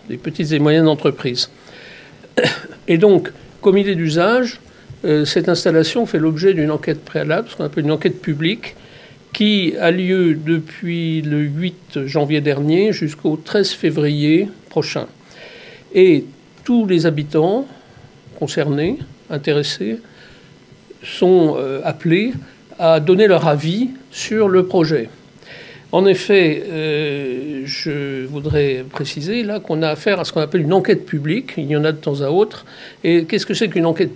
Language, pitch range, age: French, 155-195 Hz, 60-79